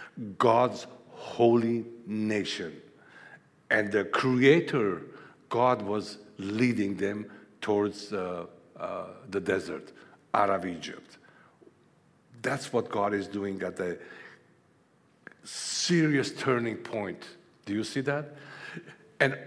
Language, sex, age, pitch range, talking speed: English, male, 60-79, 95-120 Hz, 100 wpm